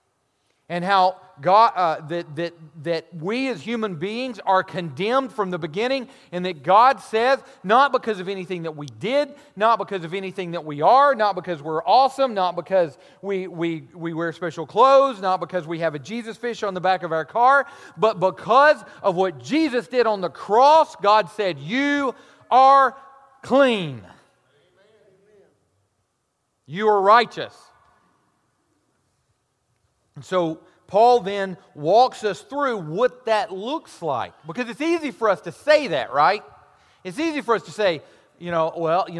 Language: English